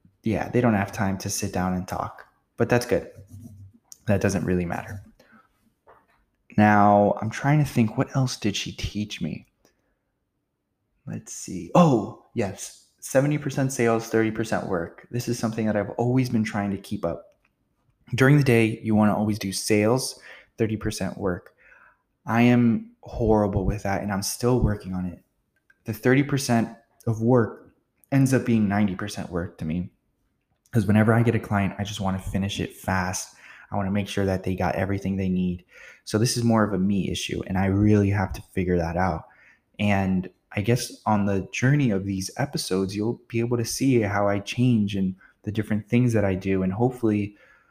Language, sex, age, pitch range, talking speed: English, male, 20-39, 100-120 Hz, 180 wpm